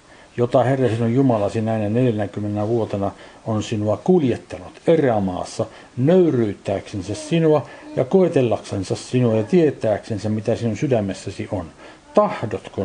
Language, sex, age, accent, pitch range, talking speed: Finnish, male, 60-79, native, 100-125 Hz, 105 wpm